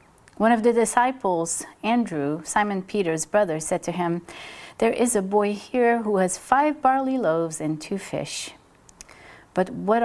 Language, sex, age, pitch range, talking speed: English, female, 40-59, 165-225 Hz, 155 wpm